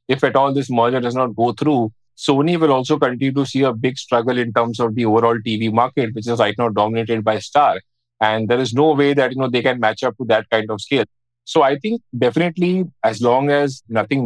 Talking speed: 240 wpm